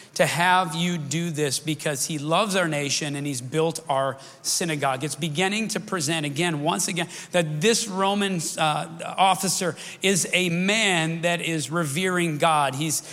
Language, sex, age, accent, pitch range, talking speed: English, male, 40-59, American, 145-180 Hz, 160 wpm